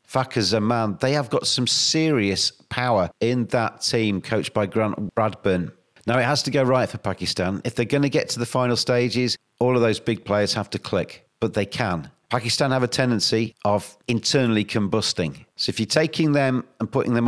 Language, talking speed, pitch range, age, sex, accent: English, 200 wpm, 100-125 Hz, 40-59, male, British